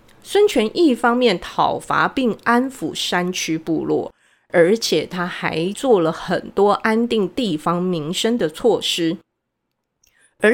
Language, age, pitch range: Chinese, 30-49, 175-265 Hz